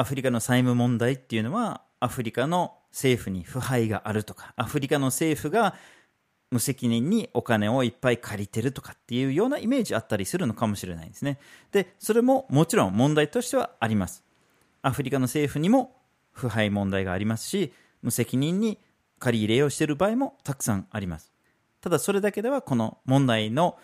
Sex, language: male, Japanese